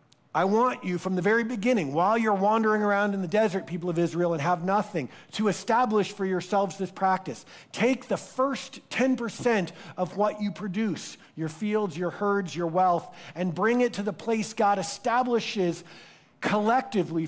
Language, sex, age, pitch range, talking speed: English, male, 50-69, 175-225 Hz, 170 wpm